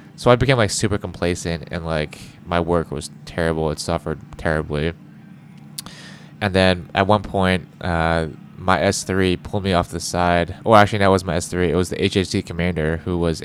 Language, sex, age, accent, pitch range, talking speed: English, male, 20-39, American, 80-95 Hz, 200 wpm